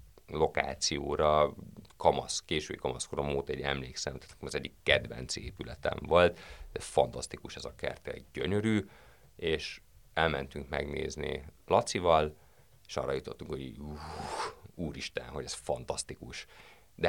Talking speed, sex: 125 wpm, male